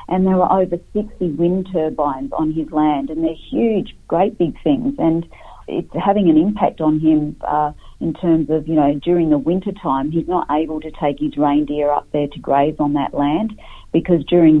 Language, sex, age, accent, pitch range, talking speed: English, female, 40-59, Australian, 145-165 Hz, 200 wpm